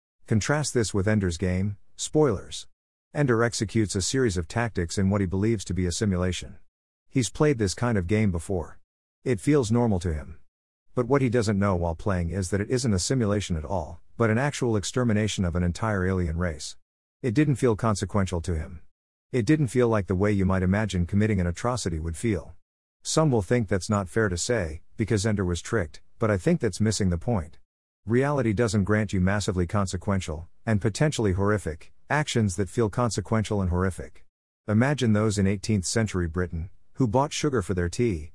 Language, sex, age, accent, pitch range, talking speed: English, male, 50-69, American, 90-115 Hz, 190 wpm